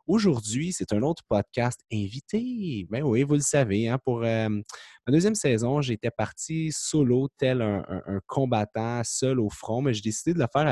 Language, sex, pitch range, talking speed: French, male, 100-130 Hz, 185 wpm